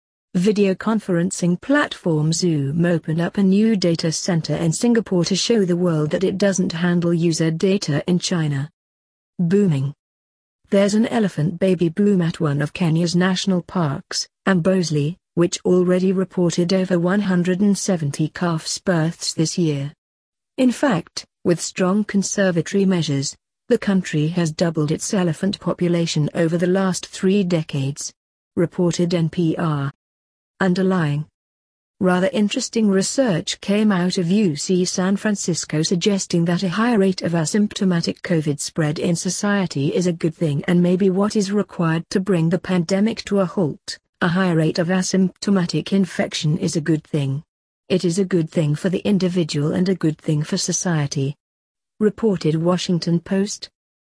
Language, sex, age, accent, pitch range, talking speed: English, female, 50-69, British, 160-190 Hz, 145 wpm